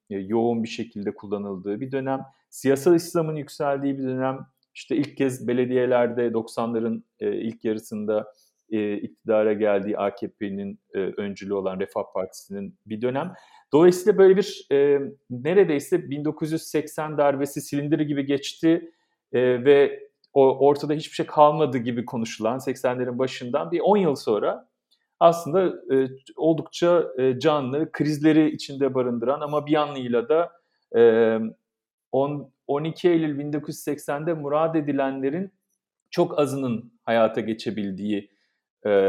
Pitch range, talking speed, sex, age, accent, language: 115-155 Hz, 110 wpm, male, 40-59, native, Turkish